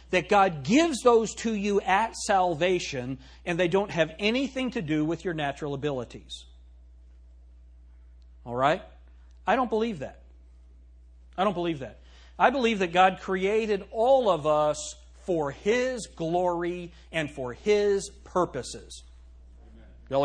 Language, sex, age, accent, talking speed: English, male, 40-59, American, 135 wpm